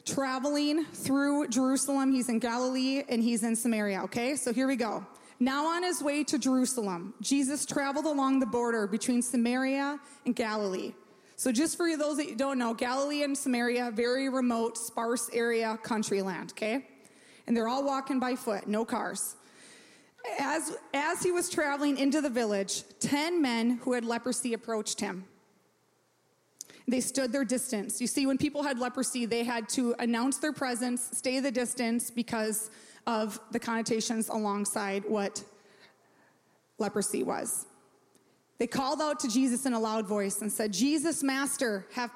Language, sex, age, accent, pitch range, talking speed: English, female, 20-39, American, 220-270 Hz, 160 wpm